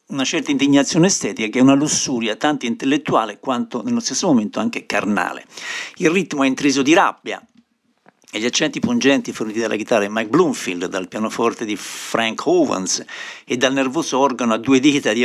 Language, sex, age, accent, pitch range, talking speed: Italian, male, 60-79, native, 115-150 Hz, 175 wpm